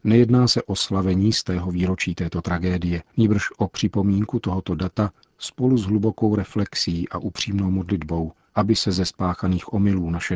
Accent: native